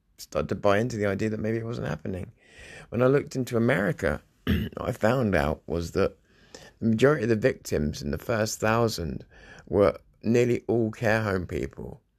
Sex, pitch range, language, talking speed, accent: male, 90-110 Hz, English, 180 wpm, British